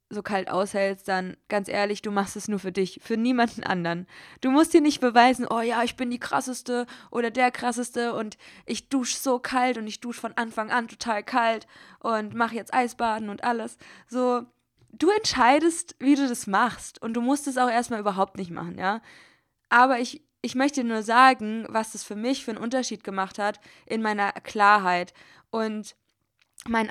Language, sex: German, female